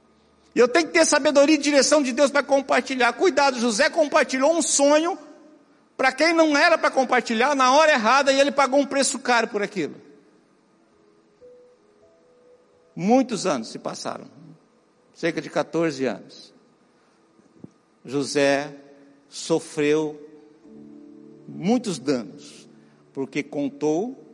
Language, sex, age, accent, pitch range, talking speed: Portuguese, male, 60-79, Brazilian, 220-295 Hz, 120 wpm